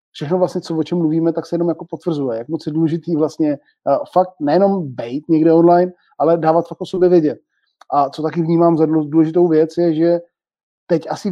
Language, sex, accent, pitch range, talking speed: Czech, male, native, 160-180 Hz, 200 wpm